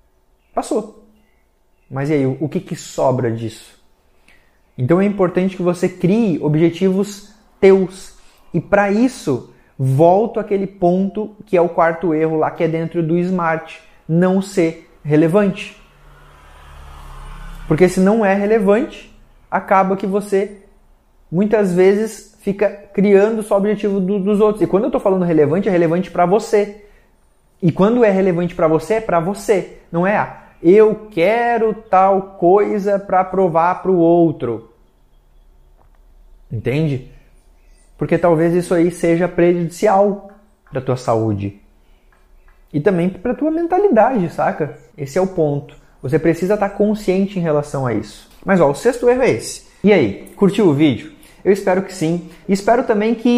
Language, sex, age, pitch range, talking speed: Portuguese, male, 20-39, 155-210 Hz, 150 wpm